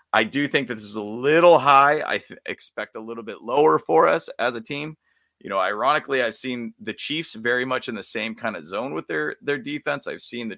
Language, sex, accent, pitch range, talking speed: English, male, American, 110-140 Hz, 240 wpm